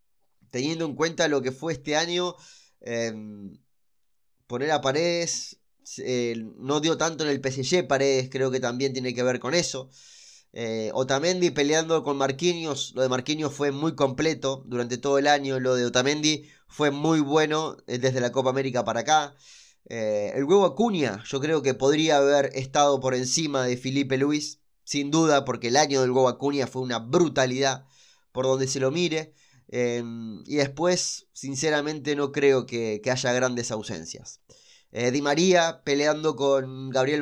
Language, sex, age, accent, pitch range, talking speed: Spanish, male, 20-39, Argentinian, 130-155 Hz, 165 wpm